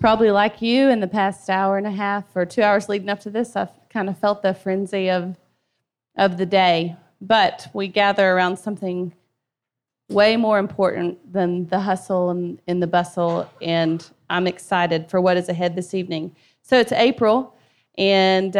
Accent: American